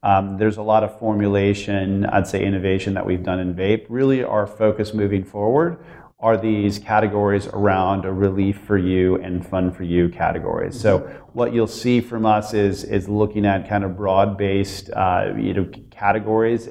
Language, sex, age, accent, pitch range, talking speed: English, male, 40-59, American, 95-110 Hz, 180 wpm